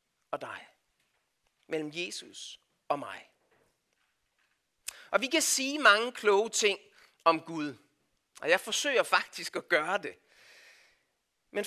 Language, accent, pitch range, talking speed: Danish, native, 175-280 Hz, 120 wpm